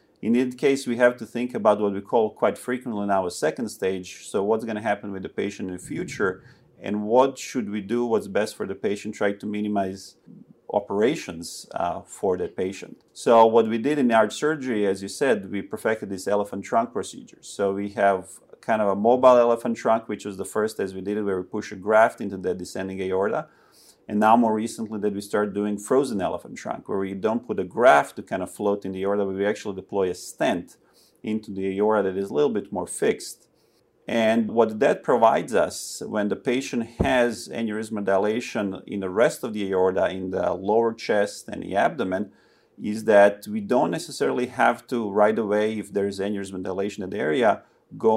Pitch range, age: 100-115 Hz, 30-49